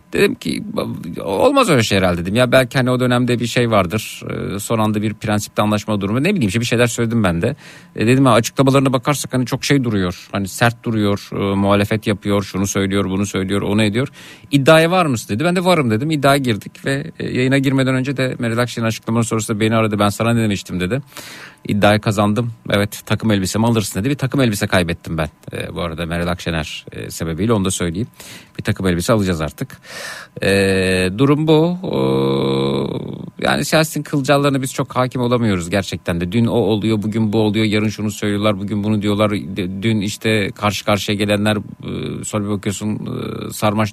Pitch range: 100-130 Hz